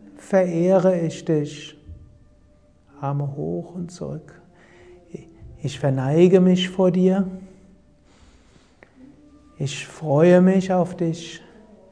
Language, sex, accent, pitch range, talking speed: German, male, German, 145-185 Hz, 85 wpm